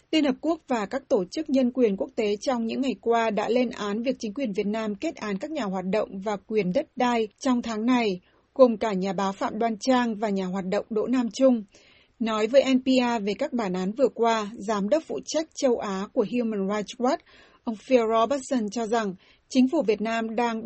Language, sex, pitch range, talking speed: Vietnamese, female, 215-265 Hz, 230 wpm